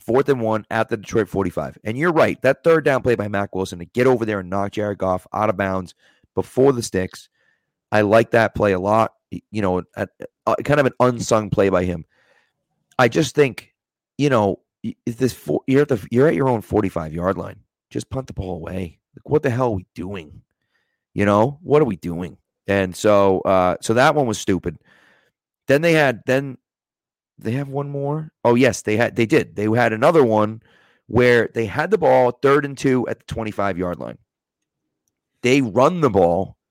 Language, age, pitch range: English, 30-49, 100-130 Hz